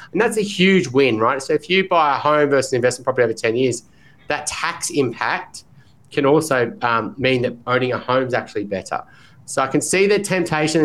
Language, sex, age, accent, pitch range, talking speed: English, male, 30-49, Australian, 115-155 Hz, 215 wpm